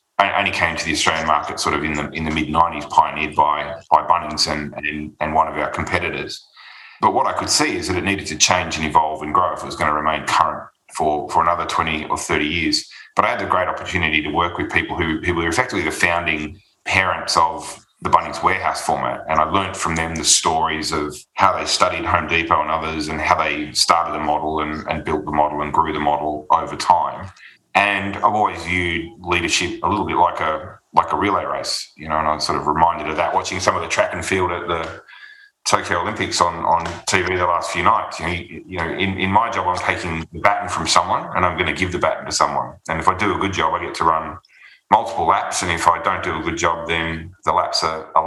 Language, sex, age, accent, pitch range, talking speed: English, male, 30-49, Australian, 75-90 Hz, 245 wpm